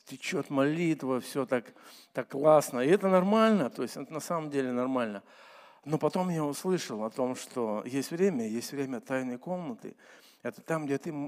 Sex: male